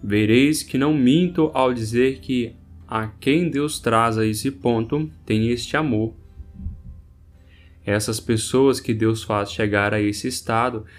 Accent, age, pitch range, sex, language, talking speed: Brazilian, 10-29, 95-130 Hz, male, Portuguese, 140 wpm